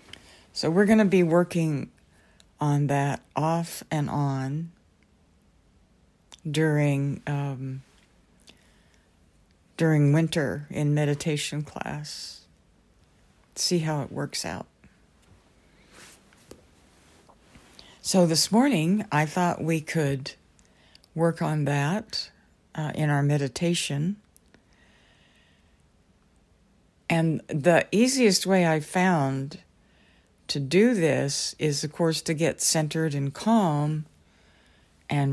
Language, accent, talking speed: English, American, 95 wpm